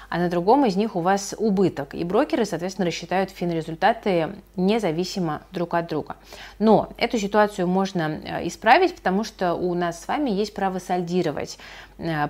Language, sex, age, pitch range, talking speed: Russian, female, 30-49, 165-200 Hz, 150 wpm